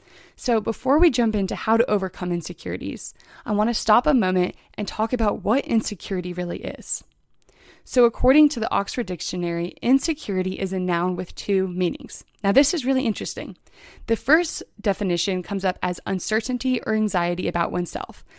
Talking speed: 165 wpm